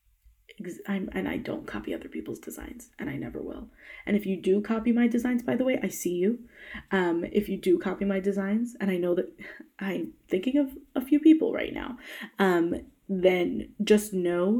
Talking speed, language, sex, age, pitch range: 195 wpm, English, female, 20-39, 185-250 Hz